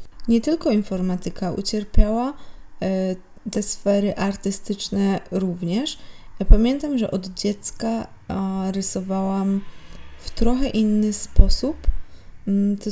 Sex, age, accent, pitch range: female, 20-39, native, 185-215 Hz